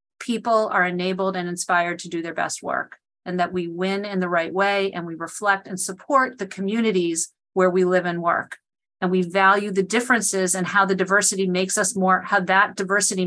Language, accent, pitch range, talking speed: English, American, 180-205 Hz, 205 wpm